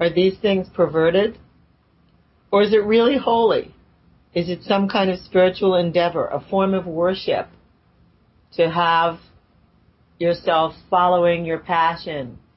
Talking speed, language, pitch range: 125 wpm, English, 155-185 Hz